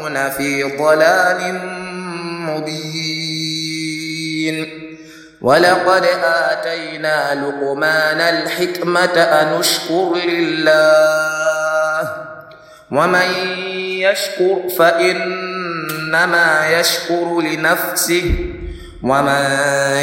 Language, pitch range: English, 155-175 Hz